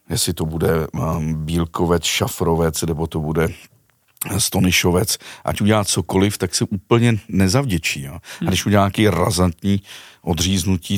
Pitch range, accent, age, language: 90-120 Hz, native, 50-69, Czech